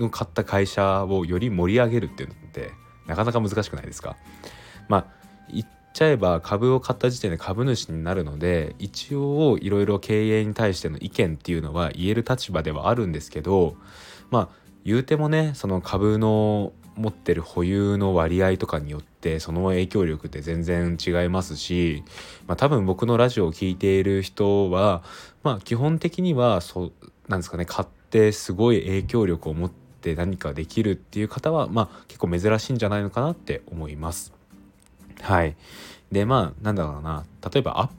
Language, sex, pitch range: Japanese, male, 85-110 Hz